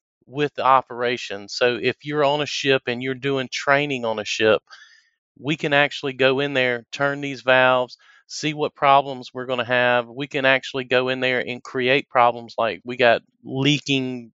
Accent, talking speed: American, 190 wpm